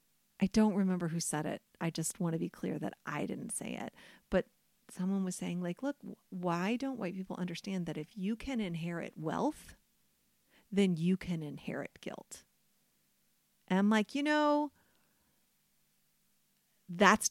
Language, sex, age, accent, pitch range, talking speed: English, female, 40-59, American, 185-275 Hz, 155 wpm